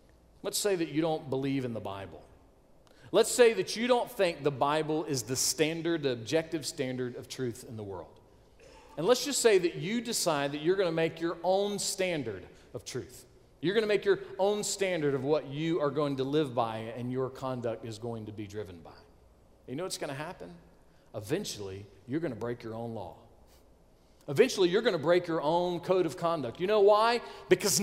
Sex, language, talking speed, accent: male, English, 210 wpm, American